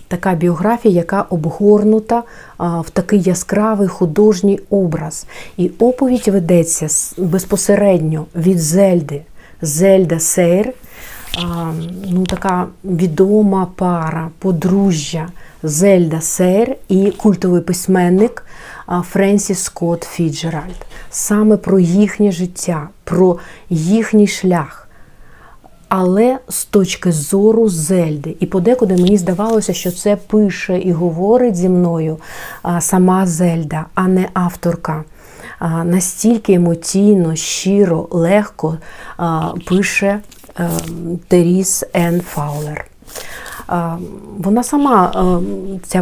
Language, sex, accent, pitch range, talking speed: Ukrainian, female, native, 175-205 Hz, 95 wpm